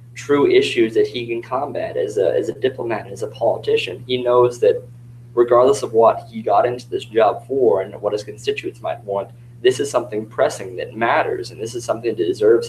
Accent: American